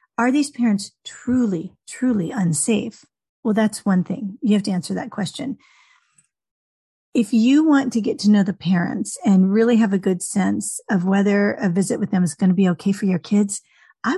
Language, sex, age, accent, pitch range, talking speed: English, female, 40-59, American, 200-245 Hz, 195 wpm